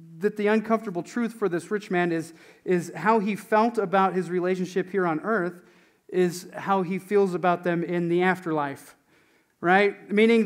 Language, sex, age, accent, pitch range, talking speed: German, male, 40-59, American, 165-210 Hz, 170 wpm